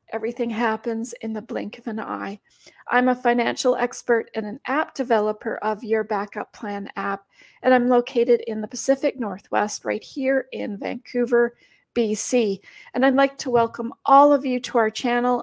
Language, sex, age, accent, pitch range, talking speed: English, female, 40-59, American, 225-270 Hz, 170 wpm